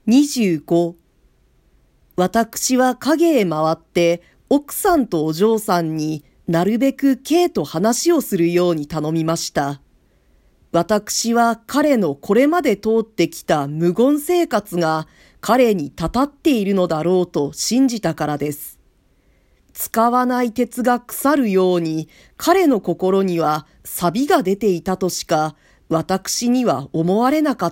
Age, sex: 40-59, female